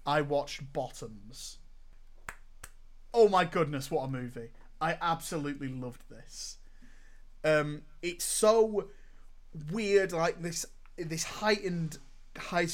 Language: English